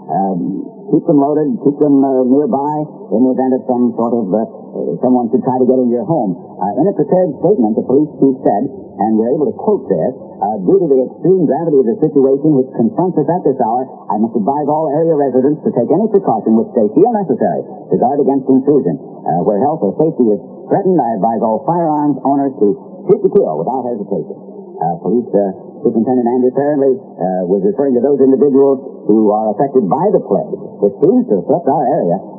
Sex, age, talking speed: male, 50-69, 210 wpm